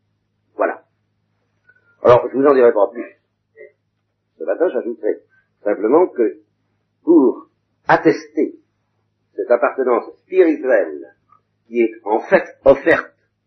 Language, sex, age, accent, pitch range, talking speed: French, male, 50-69, French, 310-415 Hz, 105 wpm